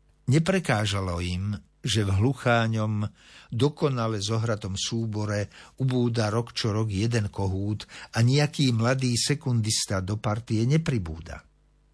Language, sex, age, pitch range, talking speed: Slovak, male, 50-69, 95-130 Hz, 105 wpm